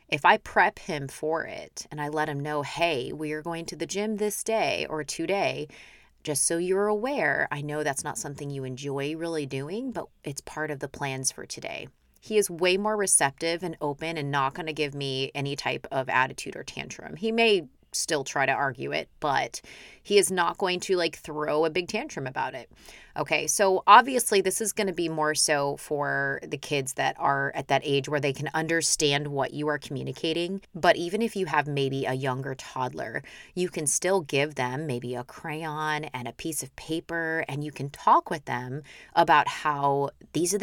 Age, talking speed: 30-49, 205 wpm